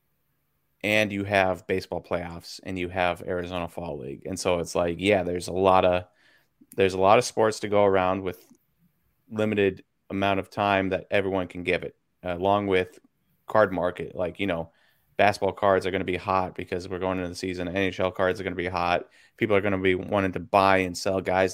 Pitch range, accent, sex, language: 95-110 Hz, American, male, English